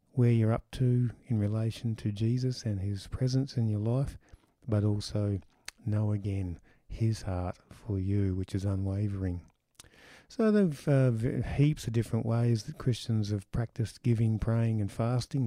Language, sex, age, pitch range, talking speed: English, male, 50-69, 105-125 Hz, 155 wpm